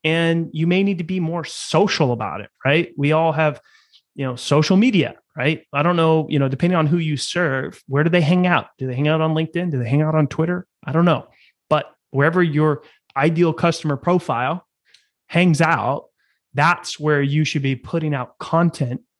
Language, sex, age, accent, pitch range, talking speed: English, male, 30-49, American, 135-170 Hz, 205 wpm